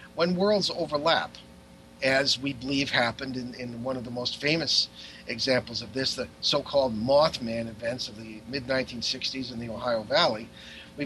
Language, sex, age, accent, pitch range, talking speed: English, male, 50-69, American, 115-150 Hz, 155 wpm